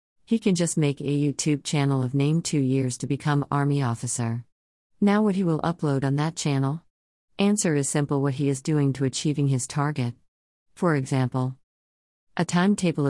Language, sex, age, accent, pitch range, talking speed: English, female, 40-59, American, 130-150 Hz, 175 wpm